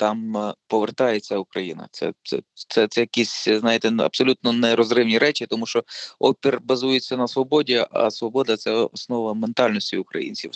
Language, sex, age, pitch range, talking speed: Ukrainian, male, 20-39, 105-125 Hz, 140 wpm